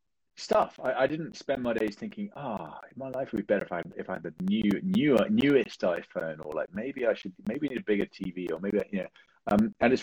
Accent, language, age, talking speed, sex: British, English, 30-49, 250 wpm, male